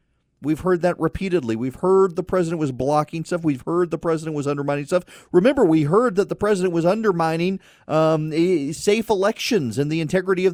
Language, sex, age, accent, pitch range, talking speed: English, male, 40-59, American, 130-180 Hz, 190 wpm